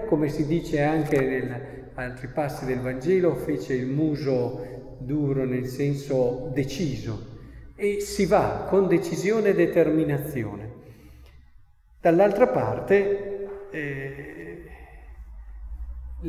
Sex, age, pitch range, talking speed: male, 40-59, 120-165 Hz, 95 wpm